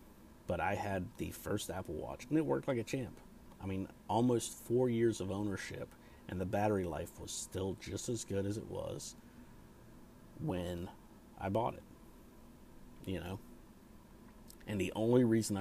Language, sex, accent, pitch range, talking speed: English, male, American, 90-105 Hz, 160 wpm